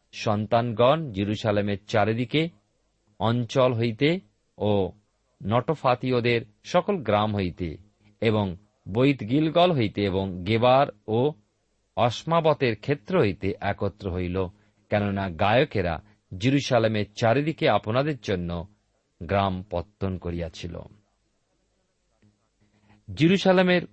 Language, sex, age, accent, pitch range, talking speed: Bengali, male, 50-69, native, 100-140 Hz, 75 wpm